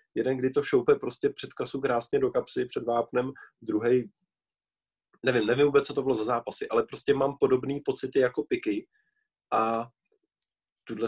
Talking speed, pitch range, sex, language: 170 wpm, 110-150 Hz, male, Czech